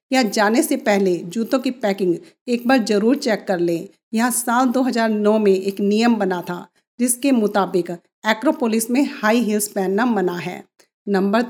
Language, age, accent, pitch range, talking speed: Hindi, 50-69, native, 200-255 Hz, 160 wpm